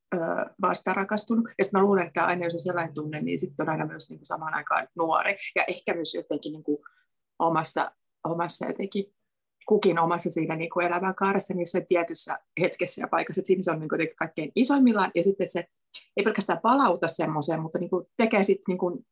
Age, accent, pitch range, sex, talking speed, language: 30-49, native, 175-225 Hz, female, 180 wpm, Finnish